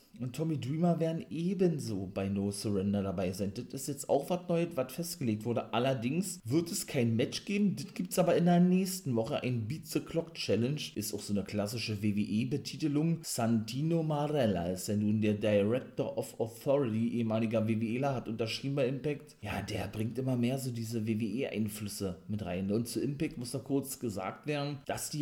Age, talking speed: 30-49, 185 wpm